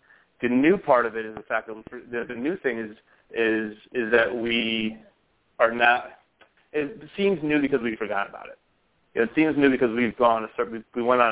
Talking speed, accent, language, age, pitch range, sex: 200 wpm, American, English, 30-49, 110-120 Hz, male